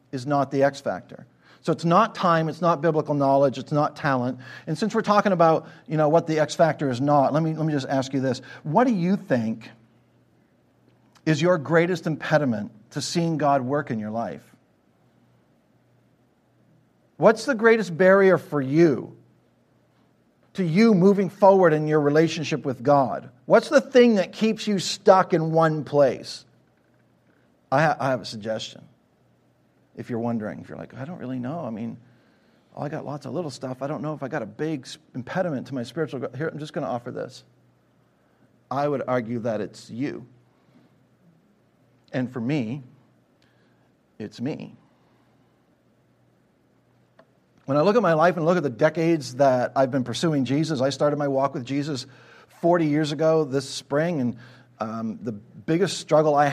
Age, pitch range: 50-69, 130-170 Hz